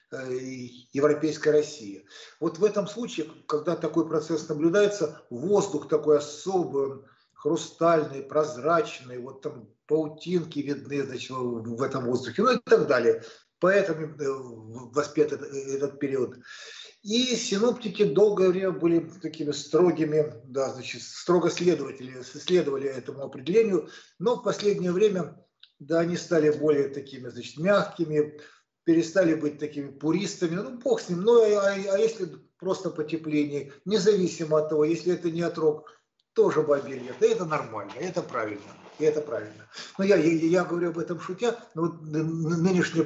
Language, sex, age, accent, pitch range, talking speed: Russian, male, 50-69, native, 150-190 Hz, 140 wpm